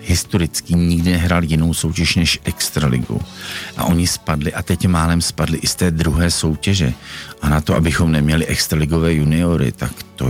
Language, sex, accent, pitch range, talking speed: Czech, male, native, 70-80 Hz, 165 wpm